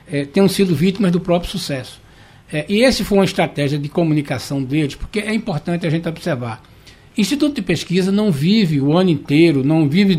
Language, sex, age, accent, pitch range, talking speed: Portuguese, male, 60-79, Brazilian, 150-205 Hz, 190 wpm